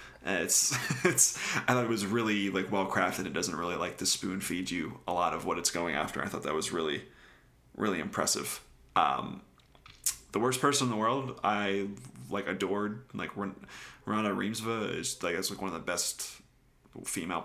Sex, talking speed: male, 180 wpm